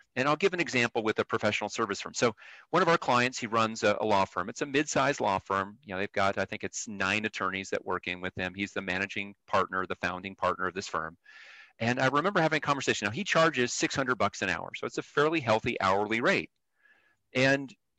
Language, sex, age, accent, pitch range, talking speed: English, male, 40-59, American, 105-150 Hz, 235 wpm